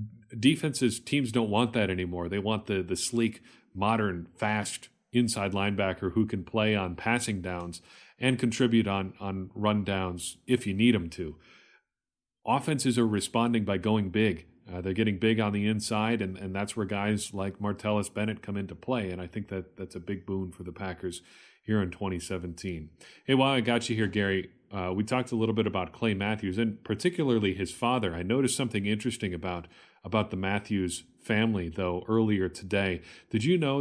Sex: male